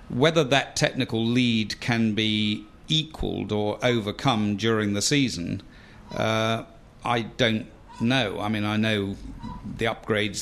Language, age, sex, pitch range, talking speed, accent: English, 50-69, male, 105-120 Hz, 125 wpm, British